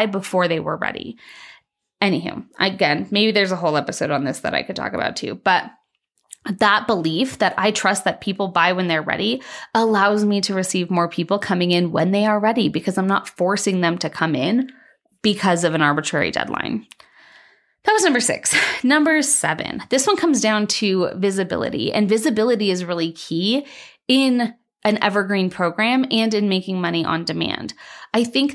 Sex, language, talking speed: female, English, 180 wpm